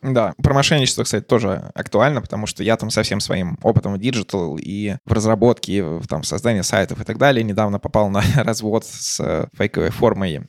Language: Russian